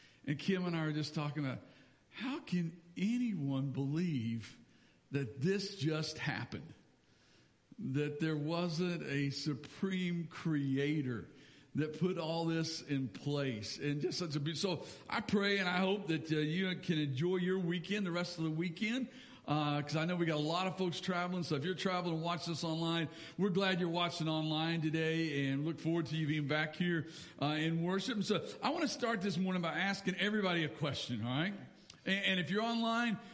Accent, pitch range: American, 155-200 Hz